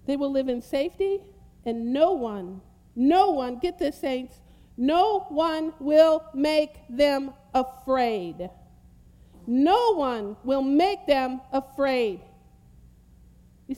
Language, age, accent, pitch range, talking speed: English, 50-69, American, 180-300 Hz, 115 wpm